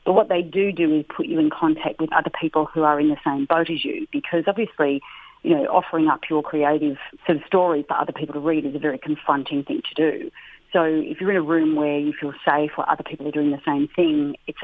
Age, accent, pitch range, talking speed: 40-59, Australian, 150-185 Hz, 260 wpm